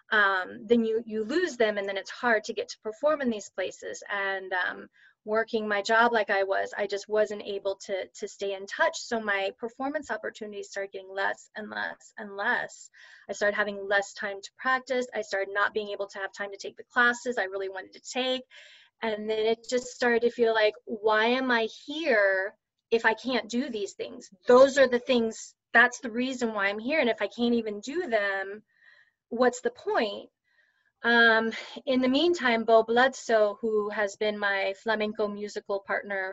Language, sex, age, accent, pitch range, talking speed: English, female, 20-39, American, 200-240 Hz, 200 wpm